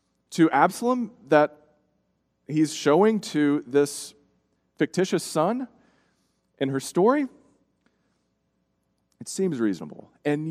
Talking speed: 90 wpm